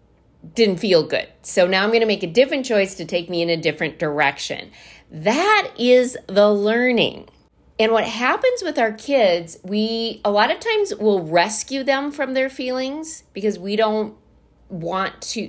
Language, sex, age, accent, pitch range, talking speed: English, female, 40-59, American, 175-240 Hz, 175 wpm